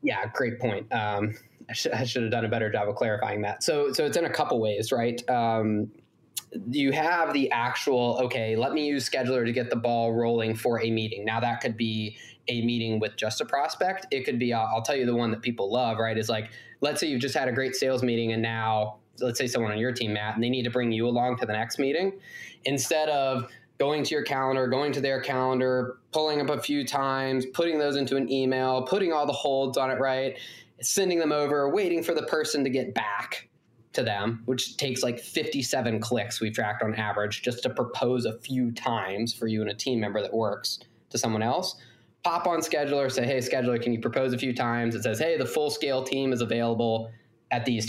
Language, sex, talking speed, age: English, male, 230 wpm, 20-39